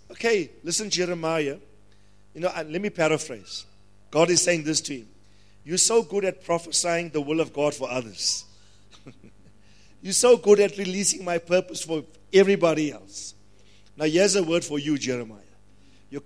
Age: 50-69